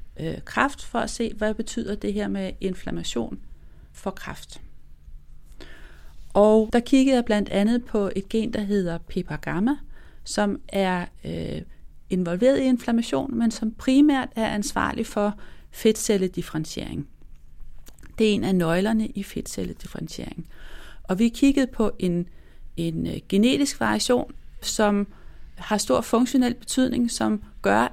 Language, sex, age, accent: Danish, female, 30-49, native